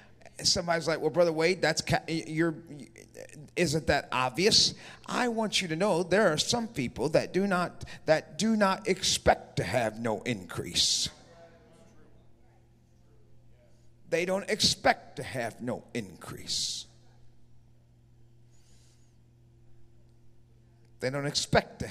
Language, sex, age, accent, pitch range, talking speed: English, male, 50-69, American, 130-185 Hz, 120 wpm